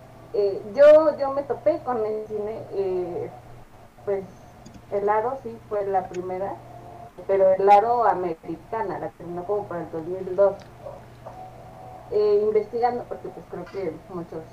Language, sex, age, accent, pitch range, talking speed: Spanish, female, 20-39, Mexican, 180-230 Hz, 135 wpm